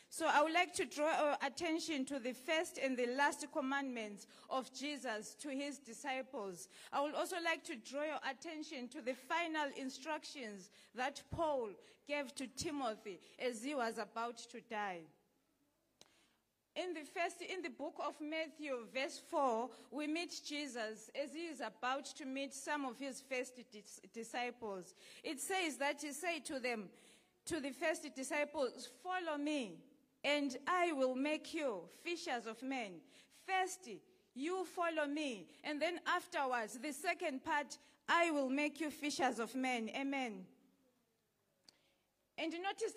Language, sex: English, female